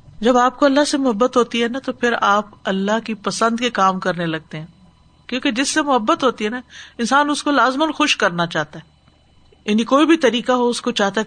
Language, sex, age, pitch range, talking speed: Urdu, female, 50-69, 195-255 Hz, 235 wpm